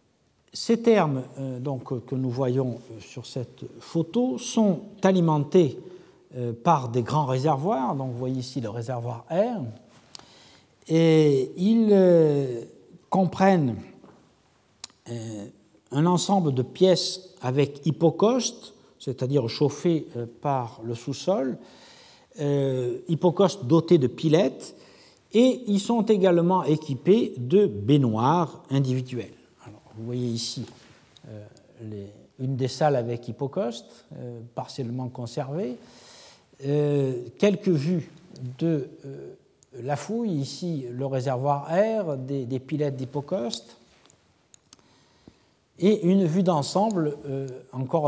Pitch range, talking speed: 125-180 Hz, 100 wpm